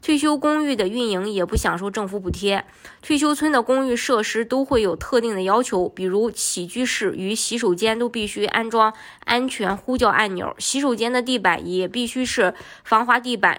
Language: Chinese